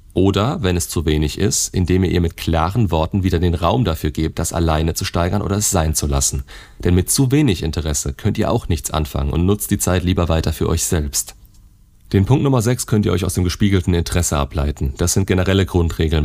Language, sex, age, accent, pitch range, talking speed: German, male, 40-59, German, 80-100 Hz, 225 wpm